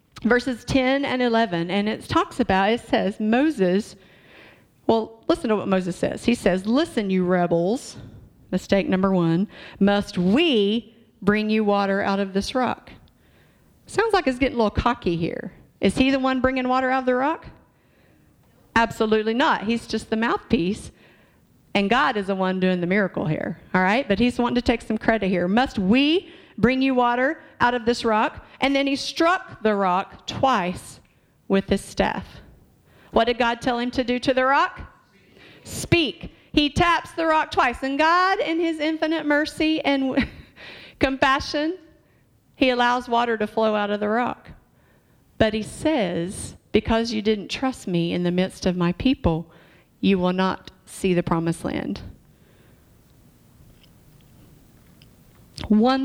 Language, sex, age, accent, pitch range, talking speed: English, female, 50-69, American, 195-265 Hz, 160 wpm